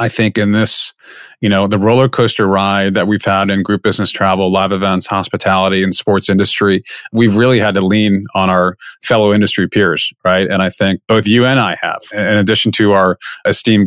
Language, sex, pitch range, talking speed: English, male, 100-115 Hz, 205 wpm